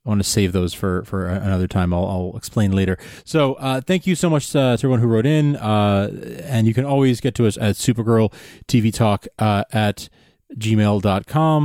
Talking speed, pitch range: 200 wpm, 100-130 Hz